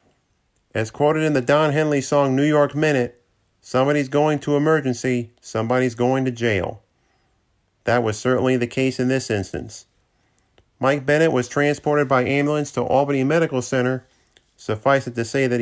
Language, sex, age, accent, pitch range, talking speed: English, male, 40-59, American, 120-145 Hz, 160 wpm